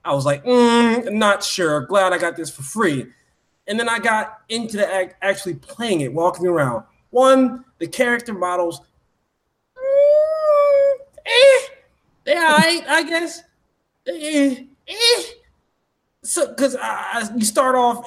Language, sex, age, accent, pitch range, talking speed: English, male, 20-39, American, 145-235 Hz, 150 wpm